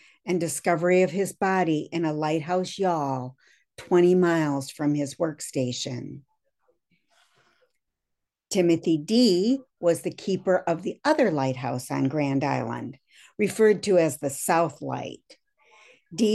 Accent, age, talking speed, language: American, 60-79, 120 wpm, English